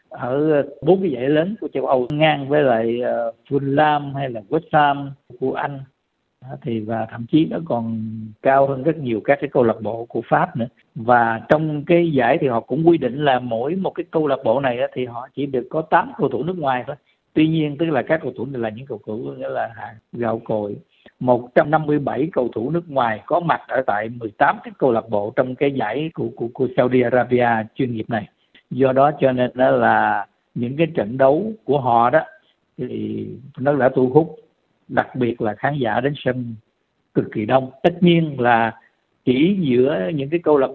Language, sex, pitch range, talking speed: Vietnamese, male, 120-150 Hz, 215 wpm